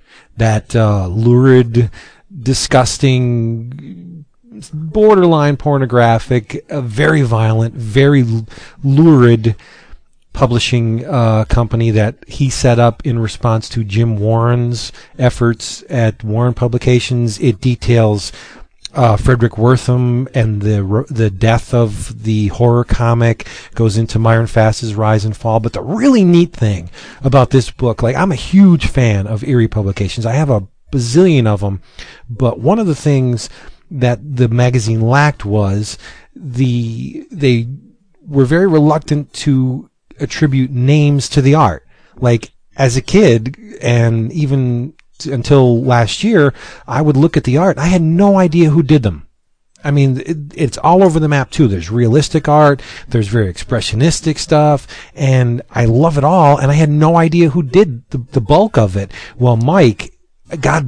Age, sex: 40-59, male